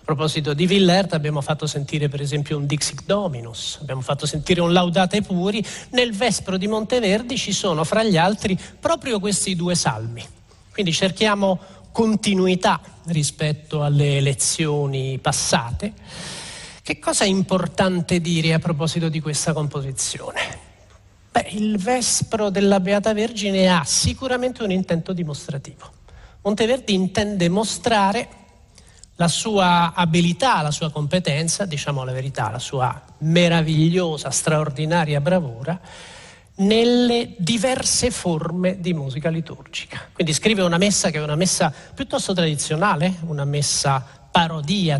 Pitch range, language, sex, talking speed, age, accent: 150-200 Hz, Italian, male, 125 wpm, 40-59, native